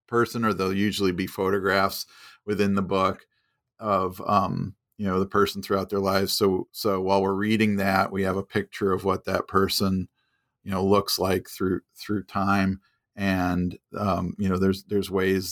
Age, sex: 40-59, male